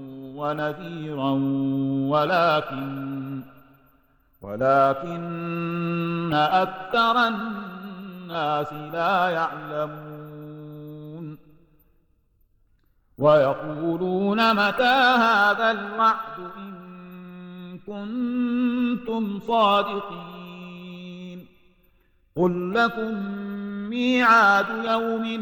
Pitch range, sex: 155-225 Hz, male